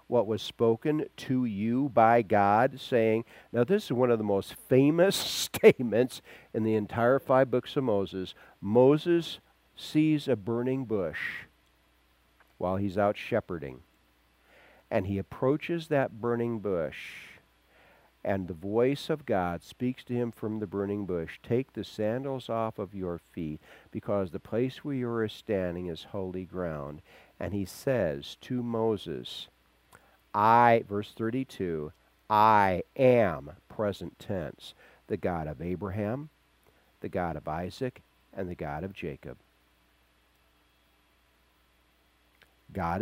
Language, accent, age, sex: English, American, 50-69, male